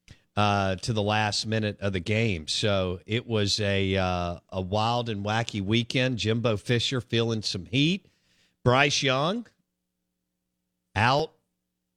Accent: American